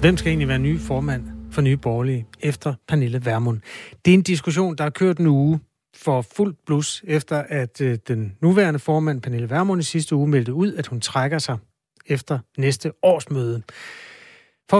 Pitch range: 125-160 Hz